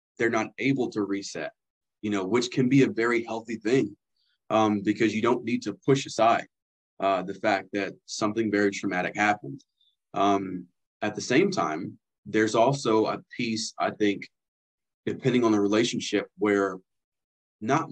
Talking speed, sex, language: 155 wpm, male, English